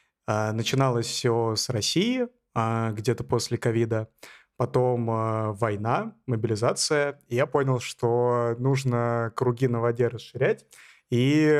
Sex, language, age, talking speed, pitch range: male, Russian, 20-39, 100 wpm, 115-130 Hz